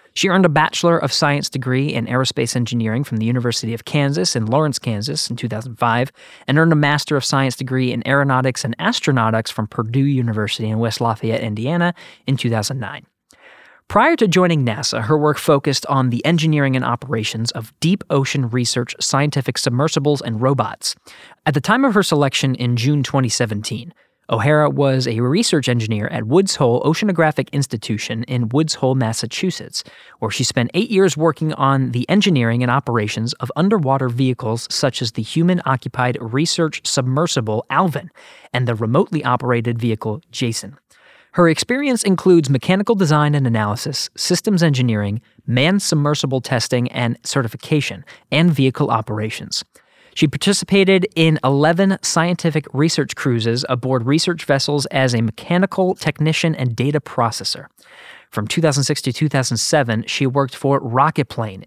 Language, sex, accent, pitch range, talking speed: English, male, American, 120-155 Hz, 145 wpm